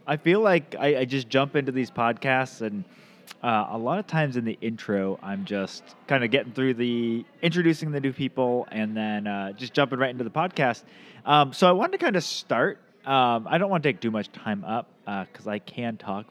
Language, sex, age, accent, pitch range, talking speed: English, male, 20-39, American, 110-145 Hz, 230 wpm